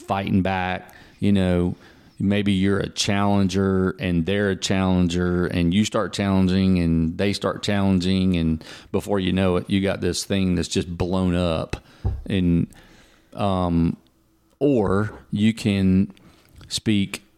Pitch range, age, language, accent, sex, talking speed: 85-100 Hz, 40-59, English, American, male, 135 wpm